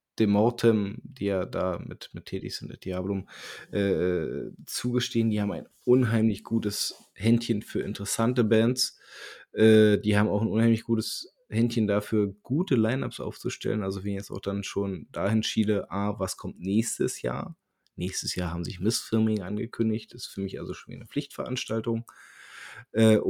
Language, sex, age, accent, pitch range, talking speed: German, male, 20-39, German, 100-120 Hz, 165 wpm